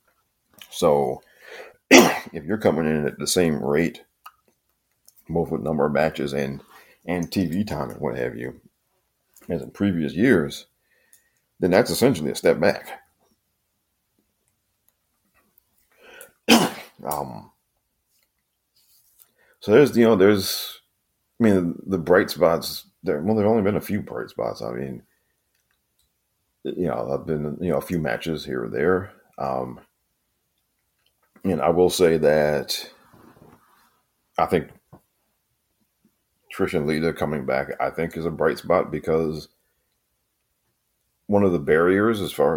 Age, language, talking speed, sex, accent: 50-69, English, 135 wpm, male, American